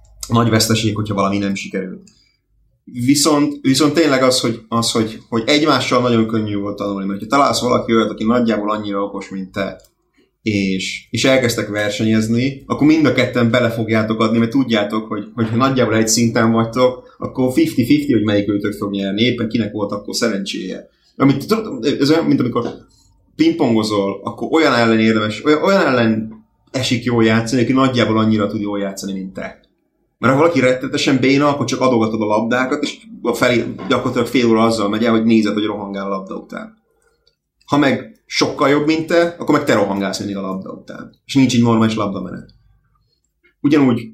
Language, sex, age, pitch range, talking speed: Hungarian, male, 30-49, 110-130 Hz, 175 wpm